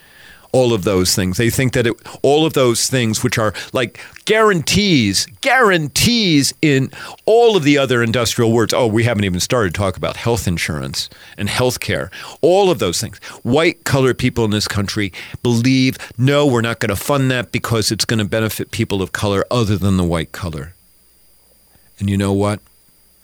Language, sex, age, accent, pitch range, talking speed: English, male, 50-69, American, 85-125 Hz, 185 wpm